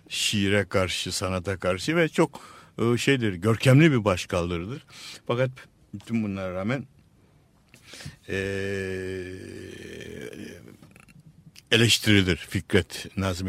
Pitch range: 95-125 Hz